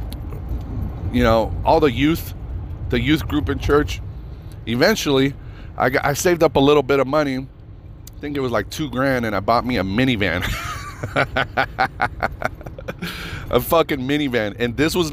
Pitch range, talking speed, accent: 90-115 Hz, 160 wpm, American